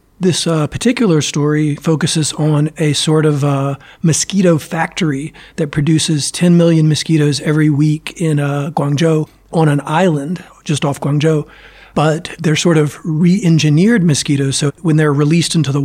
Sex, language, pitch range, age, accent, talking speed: male, English, 145-160 Hz, 40-59, American, 150 wpm